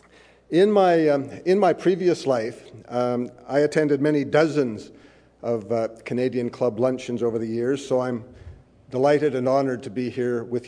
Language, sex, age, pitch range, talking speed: English, male, 50-69, 115-135 Hz, 165 wpm